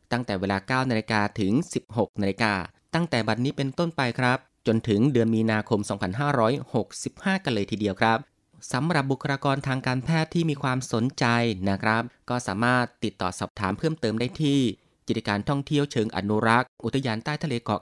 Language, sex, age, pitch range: Thai, male, 20-39, 105-140 Hz